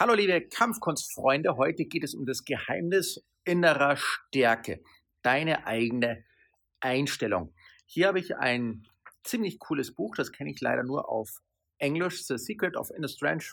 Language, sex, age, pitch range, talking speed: German, male, 40-59, 110-145 Hz, 145 wpm